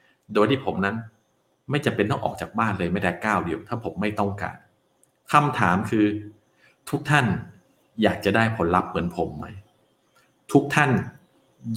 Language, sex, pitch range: Thai, male, 105-155 Hz